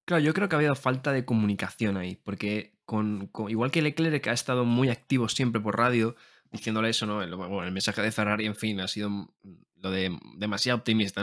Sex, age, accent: male, 20-39, Spanish